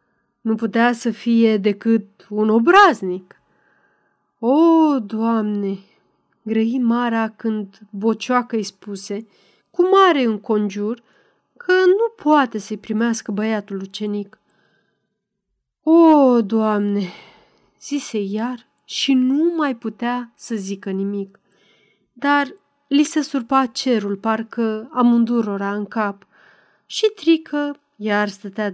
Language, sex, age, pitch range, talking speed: Romanian, female, 30-49, 205-255 Hz, 100 wpm